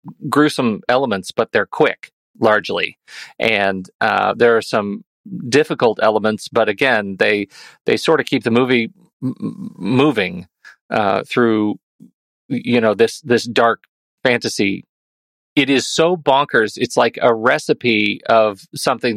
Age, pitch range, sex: 40-59, 115-155 Hz, male